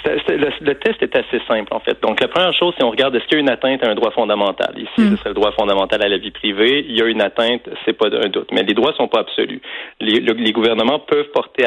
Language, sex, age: French, male, 30-49